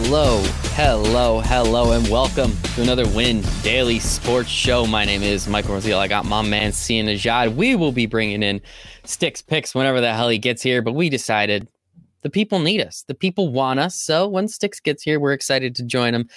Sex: male